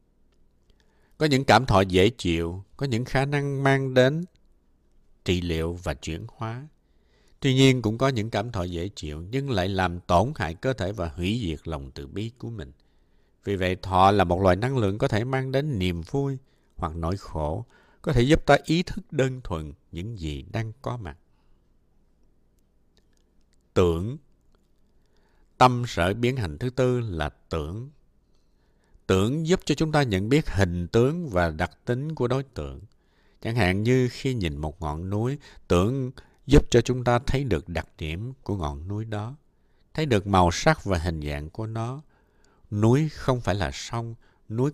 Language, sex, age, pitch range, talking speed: Vietnamese, male, 60-79, 90-130 Hz, 175 wpm